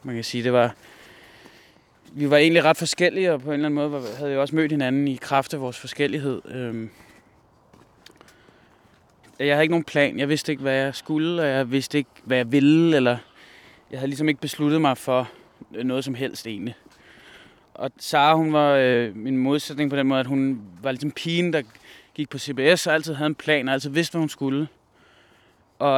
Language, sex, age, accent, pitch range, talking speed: Danish, male, 20-39, native, 125-150 Hz, 200 wpm